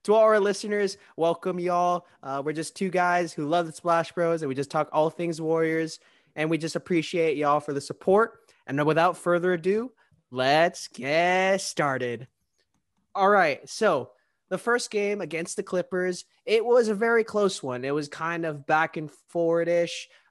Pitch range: 150-185 Hz